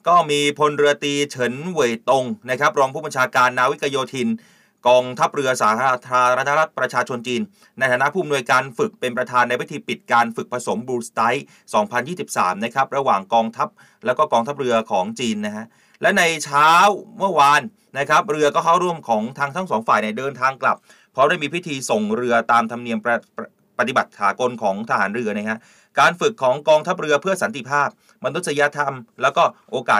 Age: 30-49